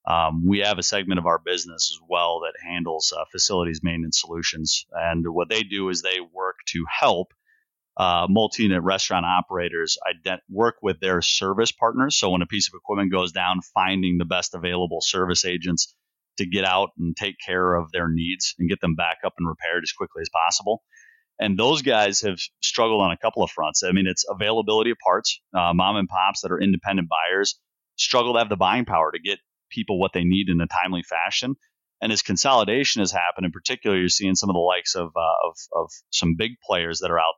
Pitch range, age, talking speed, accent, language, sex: 85-100 Hz, 30-49, 210 wpm, American, English, male